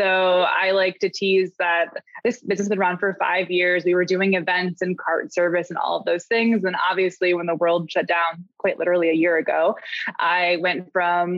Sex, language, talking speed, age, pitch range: female, English, 215 wpm, 20-39, 175-210 Hz